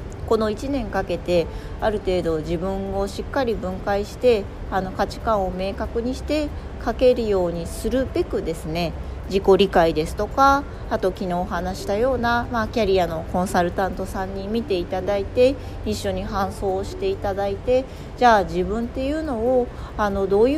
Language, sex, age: Japanese, female, 40-59